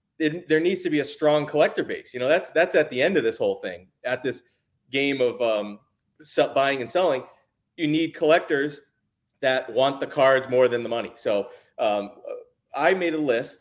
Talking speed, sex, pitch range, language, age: 195 wpm, male, 125-155 Hz, English, 30-49